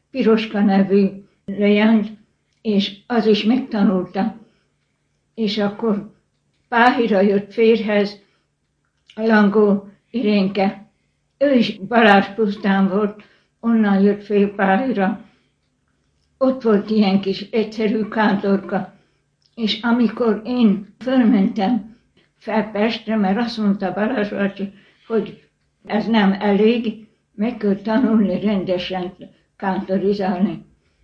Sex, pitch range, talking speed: female, 195-220 Hz, 95 wpm